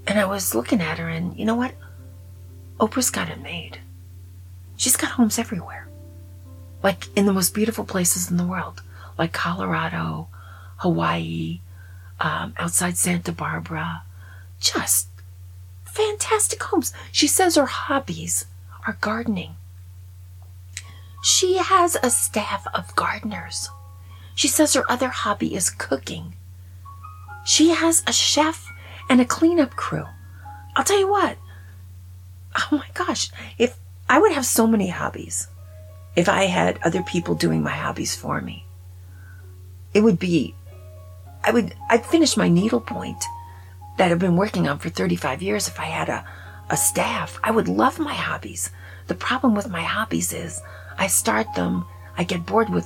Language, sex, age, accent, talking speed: English, female, 40-59, American, 145 wpm